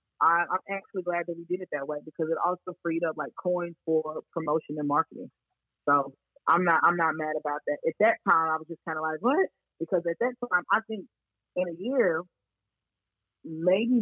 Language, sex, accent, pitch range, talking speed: English, female, American, 160-220 Hz, 205 wpm